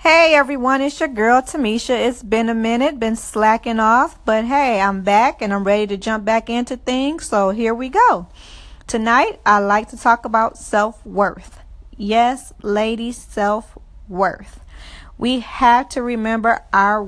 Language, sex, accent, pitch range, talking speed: English, female, American, 205-250 Hz, 155 wpm